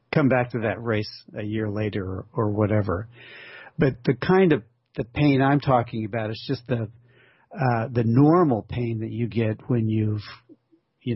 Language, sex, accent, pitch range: English, male, American, 110-125 Hz